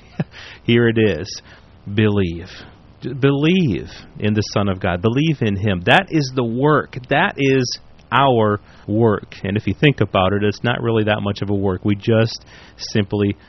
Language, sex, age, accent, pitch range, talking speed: English, male, 40-59, American, 105-130 Hz, 170 wpm